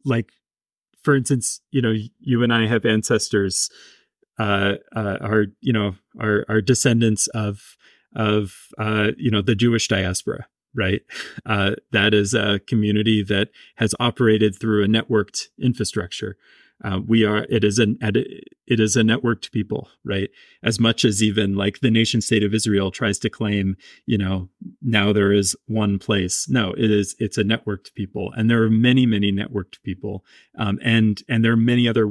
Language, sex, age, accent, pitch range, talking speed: English, male, 30-49, American, 100-115 Hz, 170 wpm